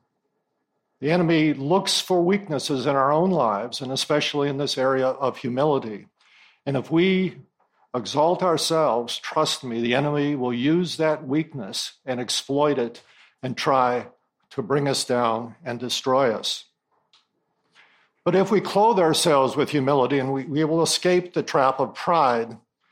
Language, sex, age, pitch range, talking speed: English, male, 50-69, 130-165 Hz, 150 wpm